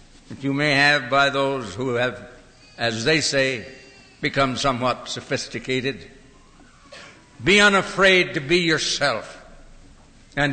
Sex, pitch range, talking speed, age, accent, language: male, 130-165 Hz, 115 wpm, 60-79, American, English